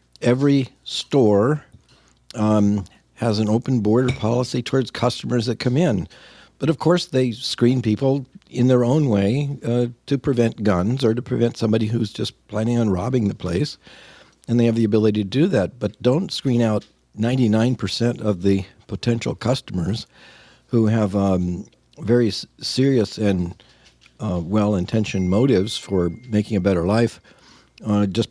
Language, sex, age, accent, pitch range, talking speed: English, male, 50-69, American, 105-125 Hz, 150 wpm